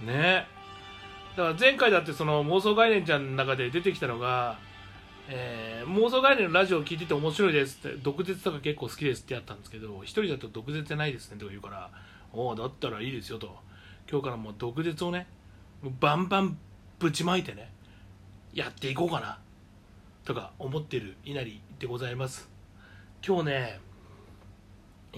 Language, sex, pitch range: Japanese, male, 100-160 Hz